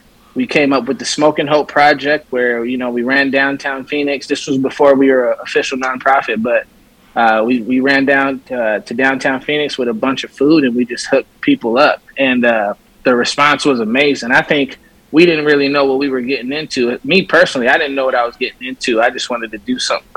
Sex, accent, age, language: male, American, 20-39, English